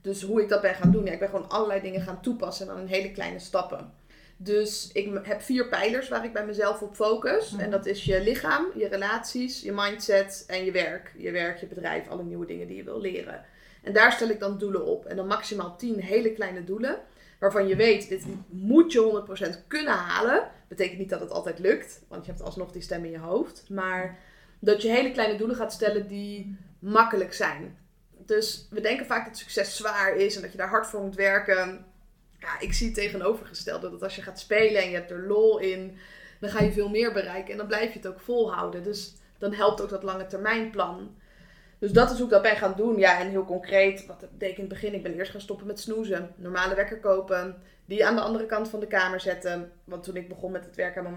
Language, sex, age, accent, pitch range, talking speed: Dutch, female, 20-39, Dutch, 185-215 Hz, 240 wpm